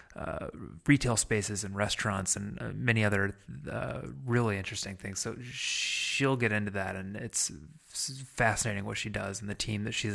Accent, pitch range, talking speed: American, 100-115 Hz, 170 wpm